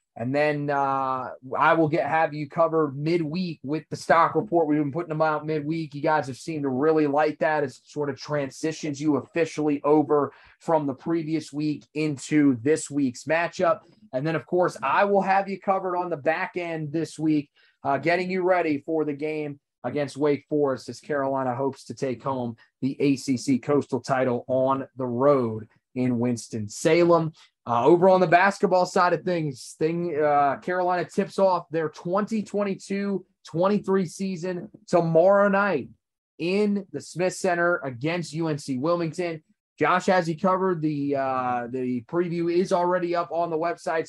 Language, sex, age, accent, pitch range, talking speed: English, male, 30-49, American, 145-175 Hz, 165 wpm